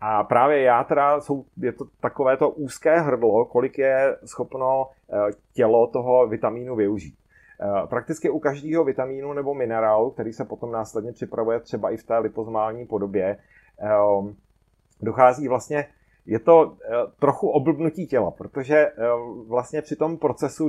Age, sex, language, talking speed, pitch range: 30-49, male, Czech, 135 wpm, 110-140 Hz